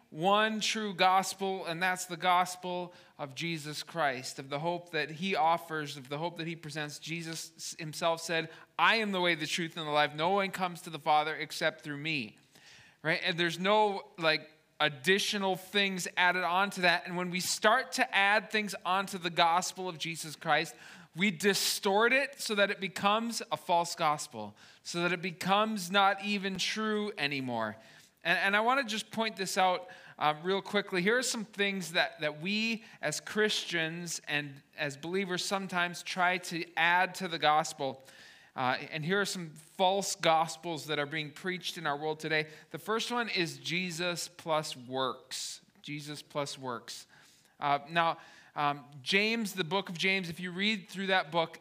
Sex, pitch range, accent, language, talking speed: male, 155-195 Hz, American, English, 180 wpm